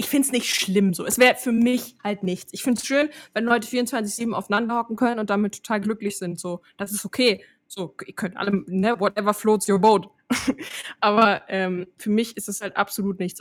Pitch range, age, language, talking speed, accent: 200-240 Hz, 20-39, German, 220 wpm, German